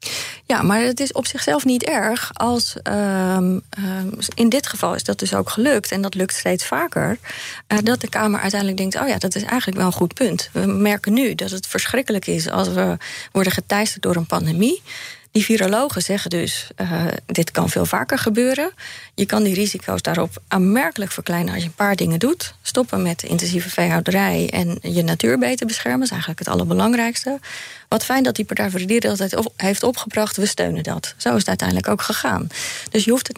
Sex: female